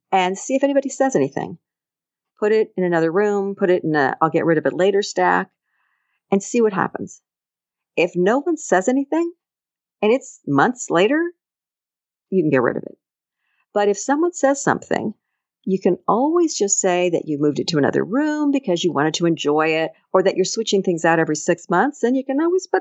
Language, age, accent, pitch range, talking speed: English, 50-69, American, 170-270 Hz, 205 wpm